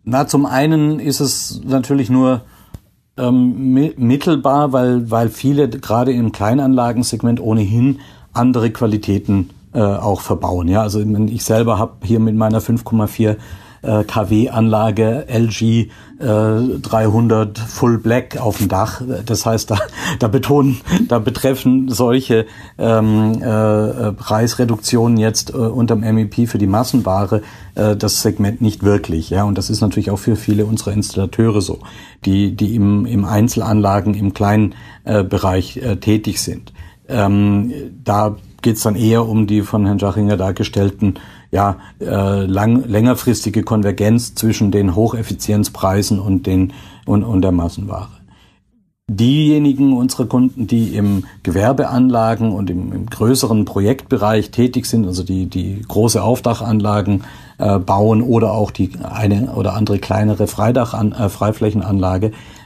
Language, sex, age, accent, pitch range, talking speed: German, male, 50-69, German, 100-120 Hz, 135 wpm